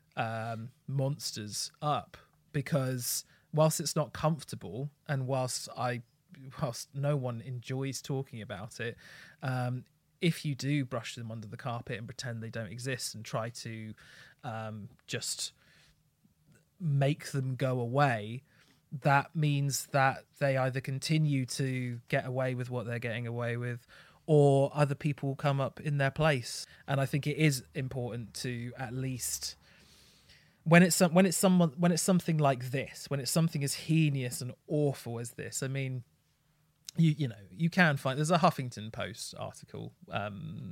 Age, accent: 30-49, British